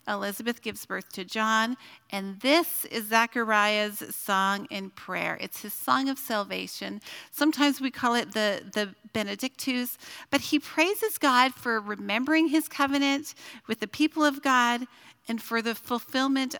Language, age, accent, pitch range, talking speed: English, 40-59, American, 205-275 Hz, 150 wpm